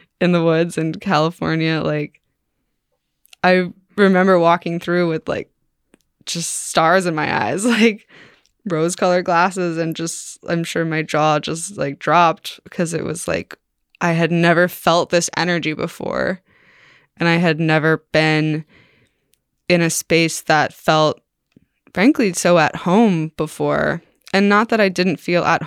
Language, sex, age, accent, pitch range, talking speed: English, female, 20-39, American, 160-190 Hz, 145 wpm